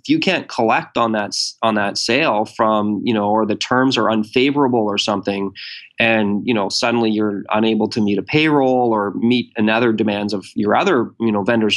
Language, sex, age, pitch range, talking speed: English, male, 20-39, 105-125 Hz, 200 wpm